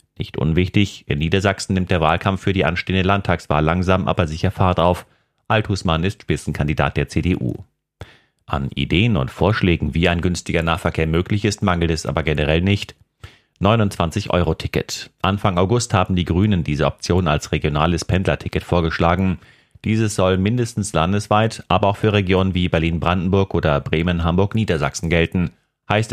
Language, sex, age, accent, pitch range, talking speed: German, male, 30-49, German, 80-100 Hz, 140 wpm